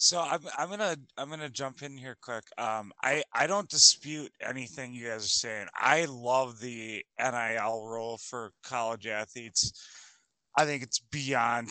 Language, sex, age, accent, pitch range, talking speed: English, male, 30-49, American, 120-160 Hz, 165 wpm